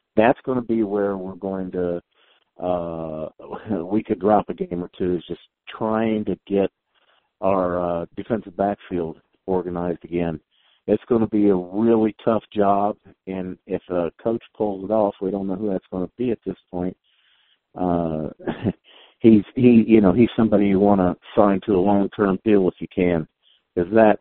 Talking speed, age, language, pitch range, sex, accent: 185 wpm, 50-69, English, 95-115 Hz, male, American